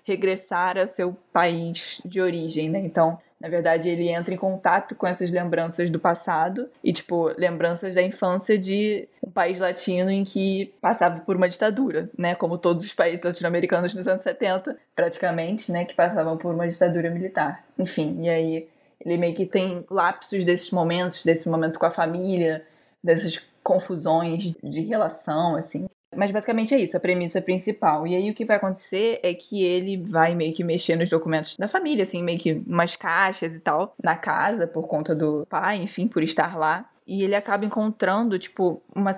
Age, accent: 10-29, Brazilian